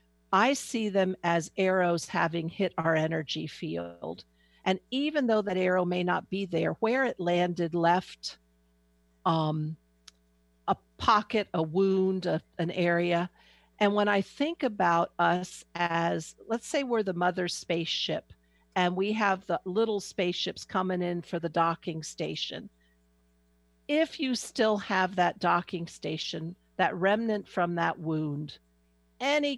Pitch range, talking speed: 160-205 Hz, 140 wpm